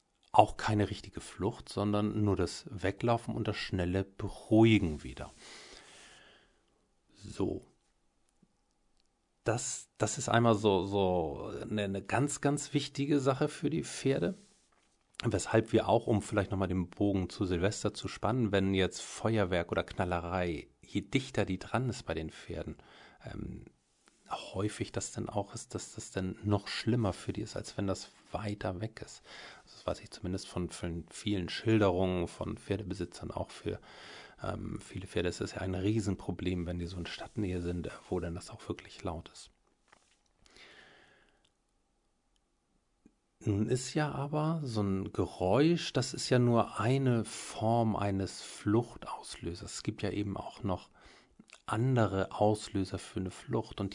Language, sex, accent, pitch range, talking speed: German, male, German, 95-115 Hz, 150 wpm